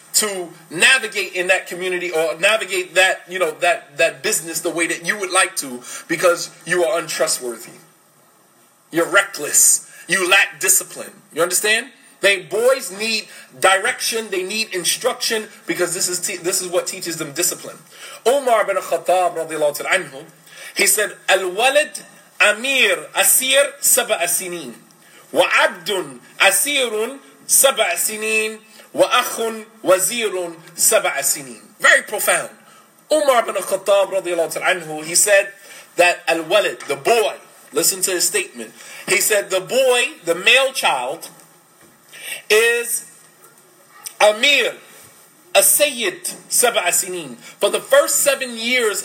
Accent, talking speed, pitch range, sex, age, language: American, 115 wpm, 175-230 Hz, male, 30-49, English